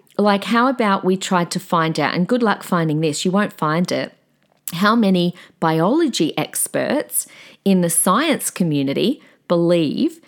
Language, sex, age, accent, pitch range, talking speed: English, female, 40-59, Australian, 165-205 Hz, 150 wpm